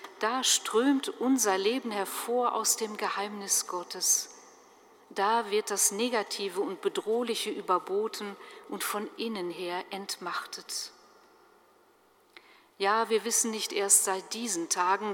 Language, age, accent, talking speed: German, 50-69, German, 115 wpm